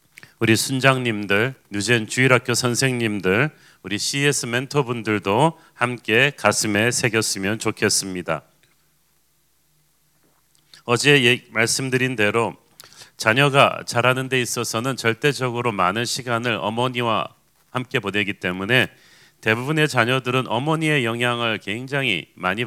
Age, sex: 40-59, male